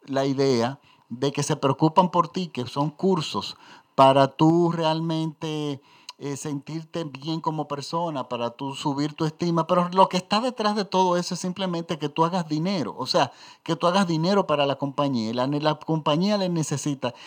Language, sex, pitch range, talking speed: Spanish, male, 145-175 Hz, 175 wpm